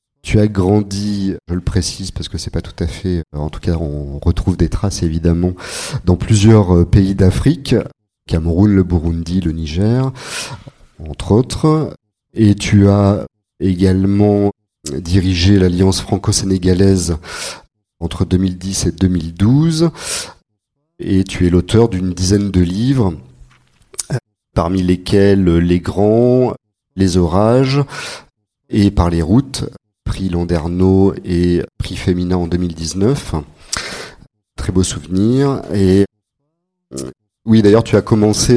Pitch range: 90-110 Hz